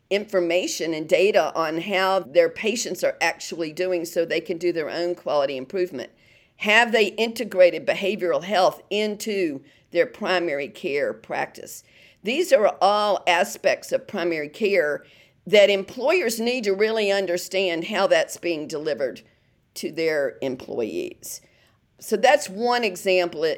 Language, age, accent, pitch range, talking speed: English, 50-69, American, 175-225 Hz, 130 wpm